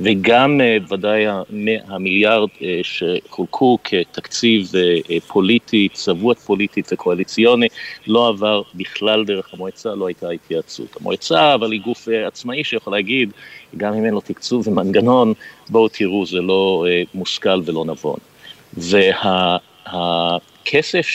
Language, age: Hebrew, 50-69